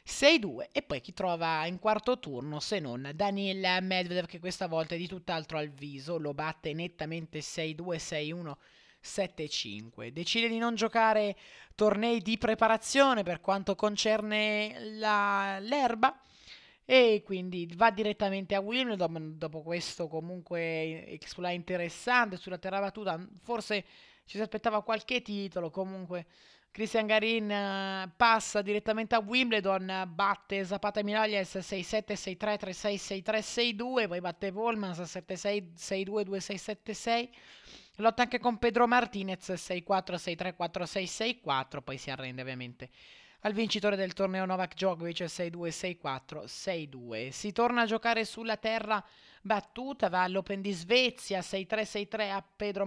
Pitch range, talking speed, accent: 175-220 Hz, 135 wpm, native